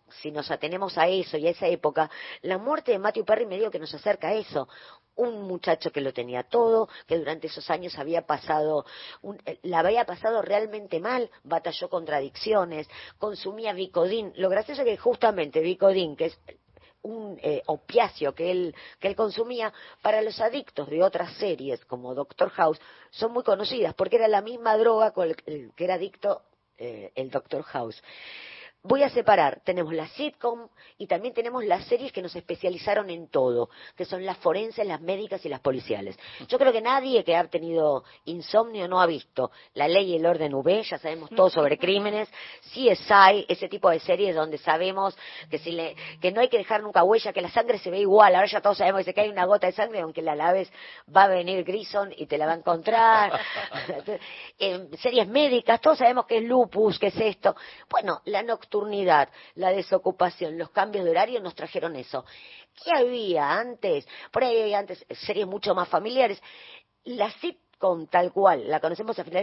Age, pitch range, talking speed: 40-59, 170-225 Hz, 190 wpm